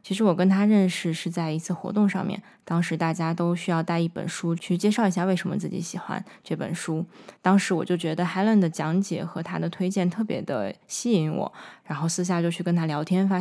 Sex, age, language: female, 20-39, Chinese